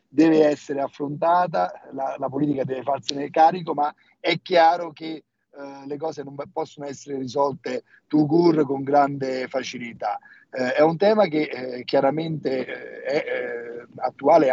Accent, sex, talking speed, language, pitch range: native, male, 150 wpm, Italian, 135-160 Hz